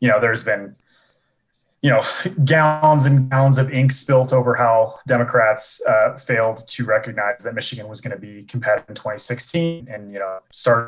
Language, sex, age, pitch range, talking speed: English, male, 20-39, 110-130 Hz, 175 wpm